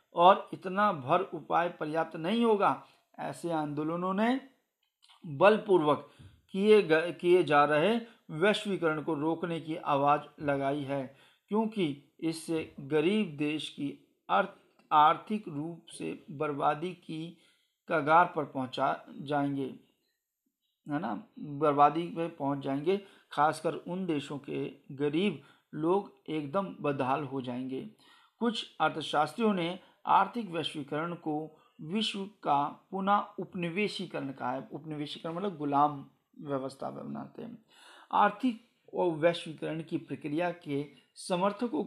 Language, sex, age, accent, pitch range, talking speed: Hindi, male, 50-69, native, 150-195 Hz, 110 wpm